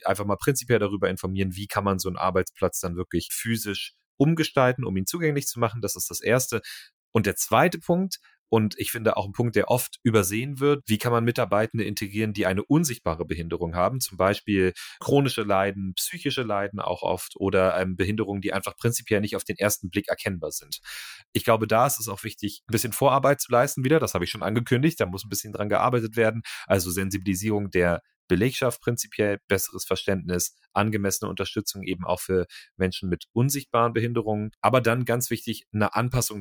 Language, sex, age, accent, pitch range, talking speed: German, male, 30-49, German, 95-120 Hz, 190 wpm